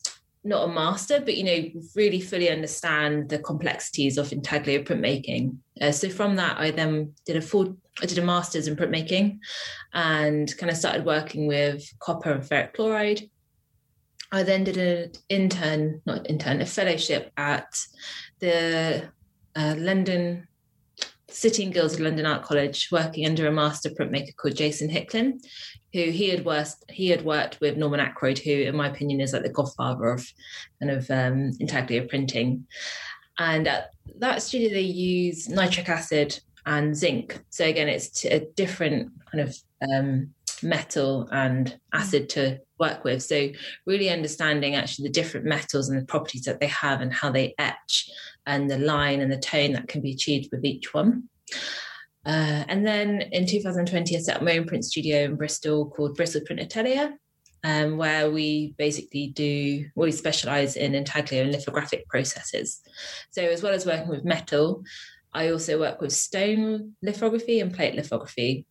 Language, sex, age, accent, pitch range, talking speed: English, female, 20-39, British, 145-175 Hz, 165 wpm